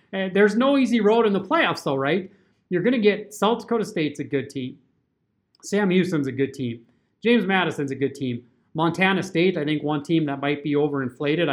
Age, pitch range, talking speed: 30-49, 135-170 Hz, 210 wpm